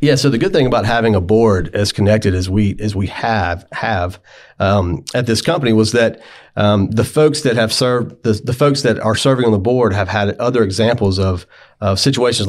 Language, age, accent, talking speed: English, 40-59, American, 215 wpm